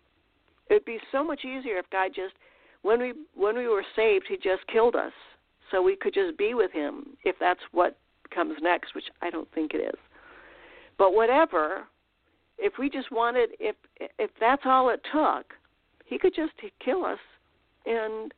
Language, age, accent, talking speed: English, 60-79, American, 180 wpm